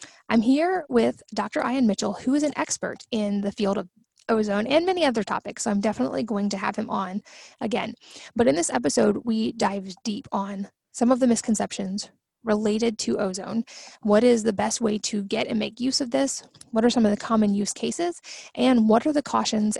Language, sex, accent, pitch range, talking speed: English, female, American, 205-240 Hz, 205 wpm